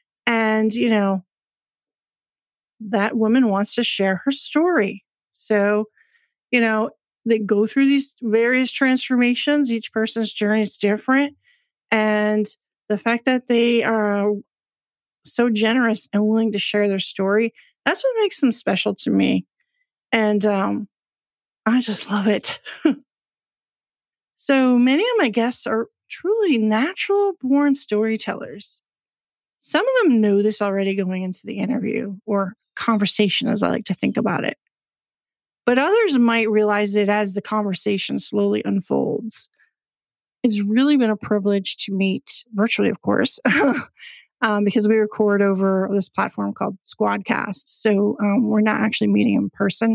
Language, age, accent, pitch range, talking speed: English, 40-59, American, 205-250 Hz, 140 wpm